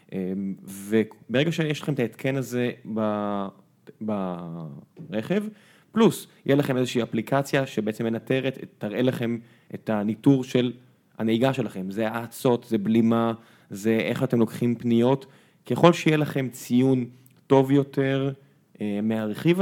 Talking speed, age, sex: 115 wpm, 20-39, male